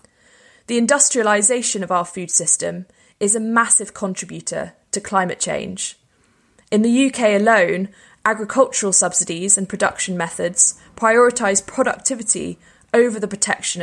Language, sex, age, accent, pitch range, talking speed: English, female, 20-39, British, 185-230 Hz, 115 wpm